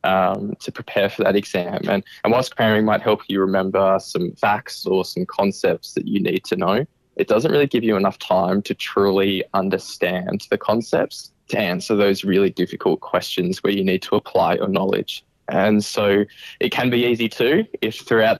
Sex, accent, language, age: male, Australian, English, 20-39